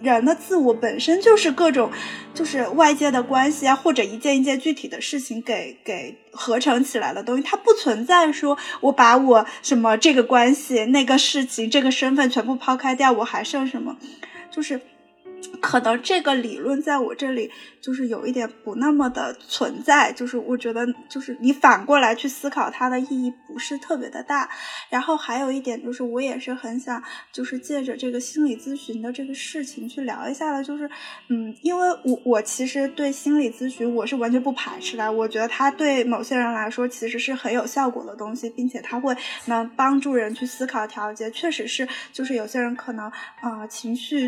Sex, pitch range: female, 240-285 Hz